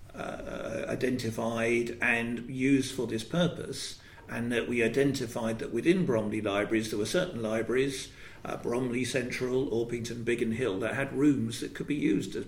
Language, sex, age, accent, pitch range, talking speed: English, male, 50-69, British, 110-130 Hz, 160 wpm